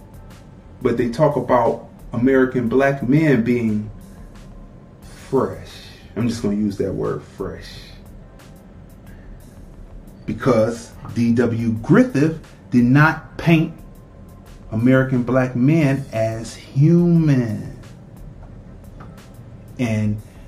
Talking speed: 85 wpm